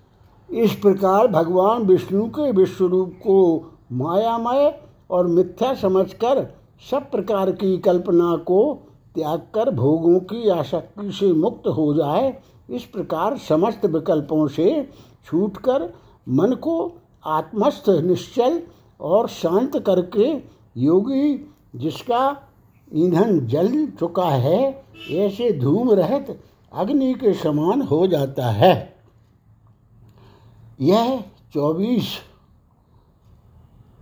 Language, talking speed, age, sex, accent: Hindi, 95 wpm, 60-79, male, native